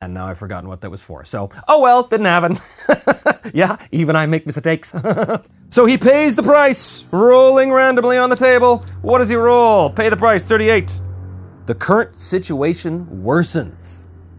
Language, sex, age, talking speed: English, male, 30-49, 165 wpm